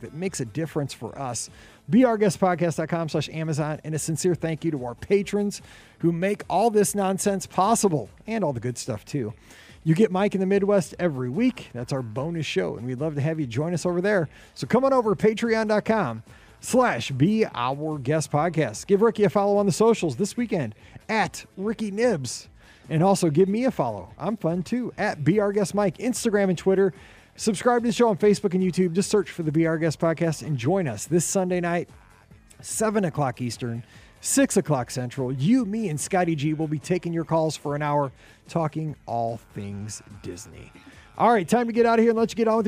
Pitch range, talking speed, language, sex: 140-205 Hz, 210 wpm, English, male